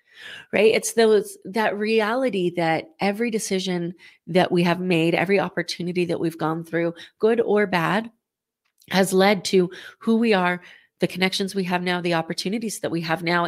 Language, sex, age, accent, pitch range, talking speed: English, female, 30-49, American, 180-230 Hz, 165 wpm